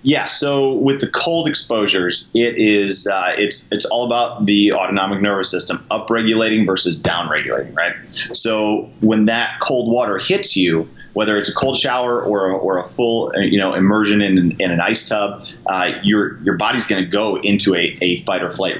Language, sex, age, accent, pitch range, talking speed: English, male, 30-49, American, 95-110 Hz, 190 wpm